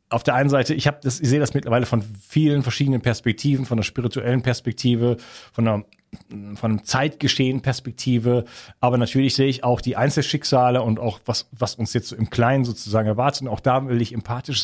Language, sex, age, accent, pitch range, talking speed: German, male, 40-59, German, 110-140 Hz, 190 wpm